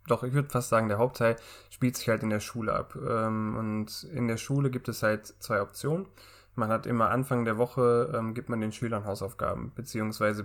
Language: German